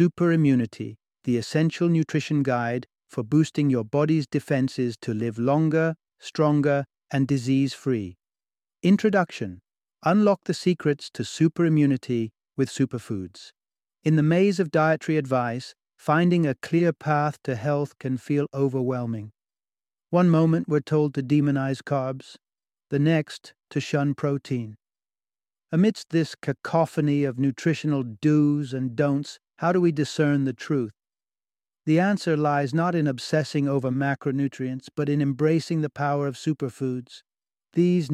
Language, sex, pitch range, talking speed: English, male, 130-155 Hz, 130 wpm